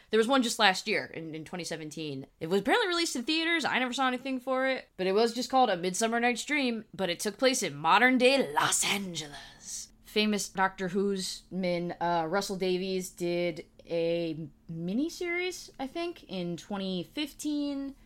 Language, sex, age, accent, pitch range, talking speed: English, female, 20-39, American, 170-250 Hz, 175 wpm